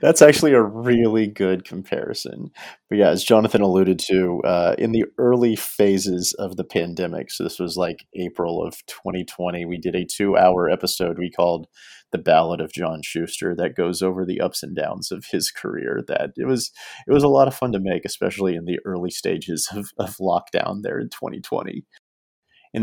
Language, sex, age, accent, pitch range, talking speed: English, male, 40-59, American, 90-105 Hz, 190 wpm